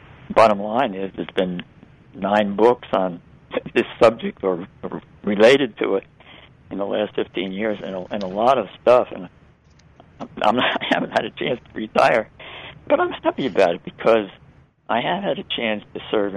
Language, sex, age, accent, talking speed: English, male, 60-79, American, 185 wpm